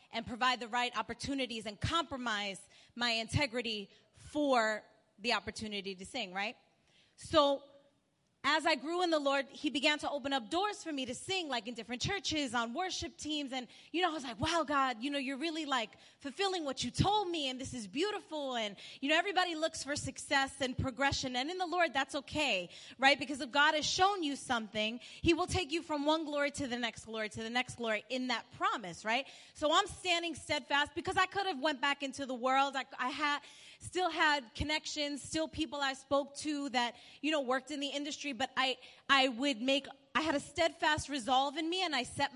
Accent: American